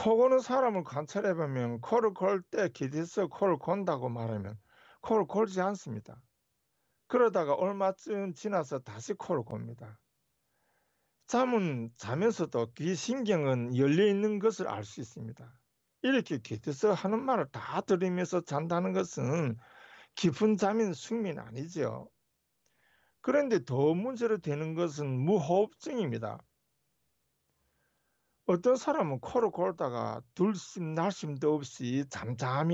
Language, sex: Korean, male